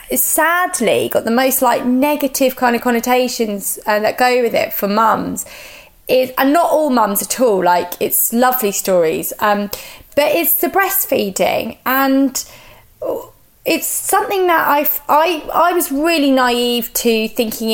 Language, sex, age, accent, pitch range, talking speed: English, female, 20-39, British, 205-275 Hz, 150 wpm